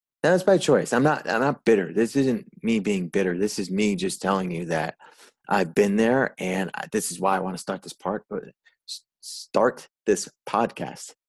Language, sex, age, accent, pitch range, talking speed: English, male, 30-49, American, 95-120 Hz, 195 wpm